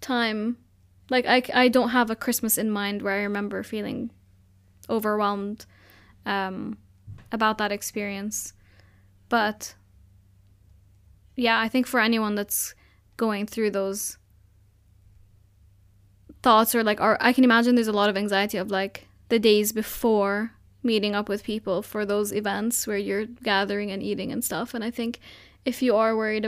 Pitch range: 185-230 Hz